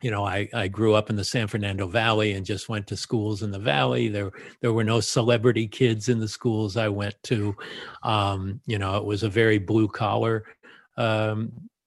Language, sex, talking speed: English, male, 205 wpm